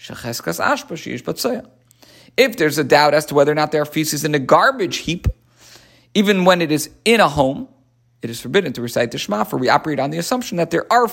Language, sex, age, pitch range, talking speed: English, male, 50-69, 135-205 Hz, 210 wpm